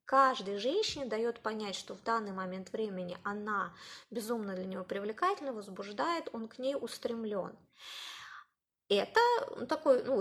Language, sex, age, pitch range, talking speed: Russian, female, 20-39, 235-315 Hz, 130 wpm